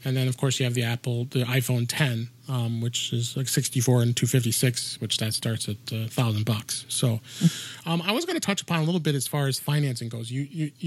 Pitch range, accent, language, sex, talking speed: 125-150 Hz, American, English, male, 225 wpm